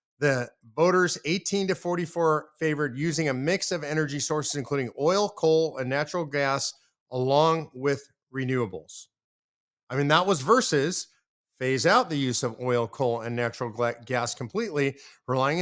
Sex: male